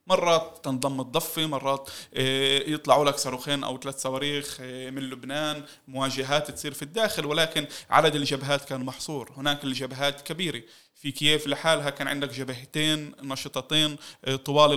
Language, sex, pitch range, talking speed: Arabic, male, 140-155 Hz, 130 wpm